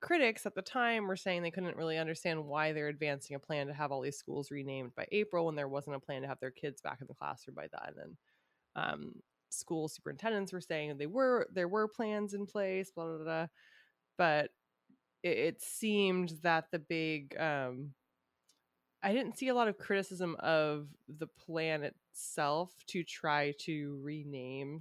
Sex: female